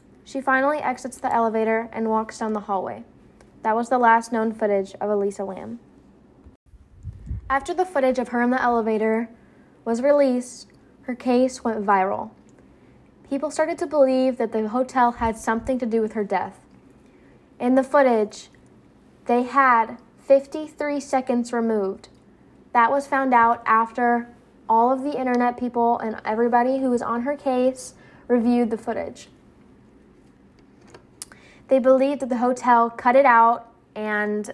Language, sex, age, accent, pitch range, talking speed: English, female, 10-29, American, 225-260 Hz, 145 wpm